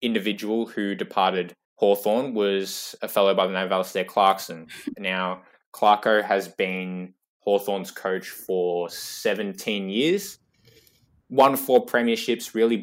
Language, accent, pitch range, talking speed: English, Australian, 90-105 Hz, 120 wpm